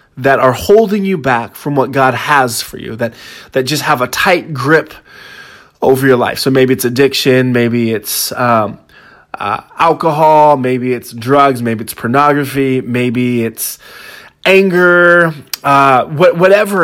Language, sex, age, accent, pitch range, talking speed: English, male, 20-39, American, 130-155 Hz, 150 wpm